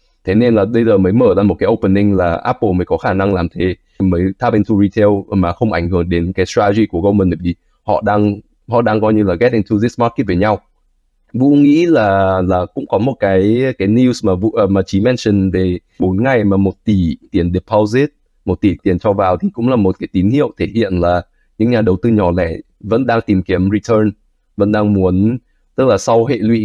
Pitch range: 95-115 Hz